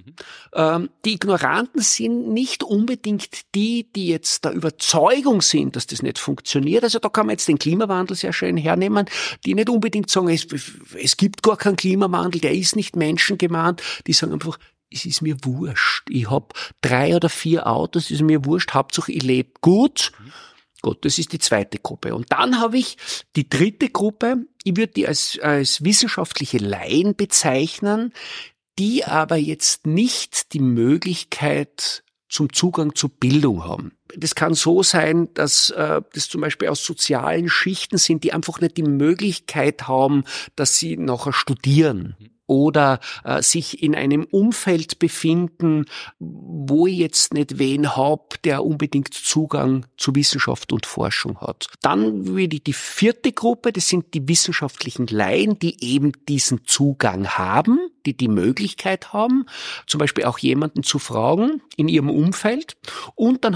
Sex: male